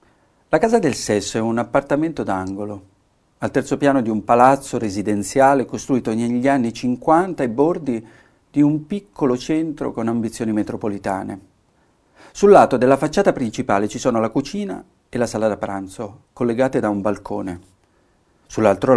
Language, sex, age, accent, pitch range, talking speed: Italian, male, 50-69, native, 105-140 Hz, 150 wpm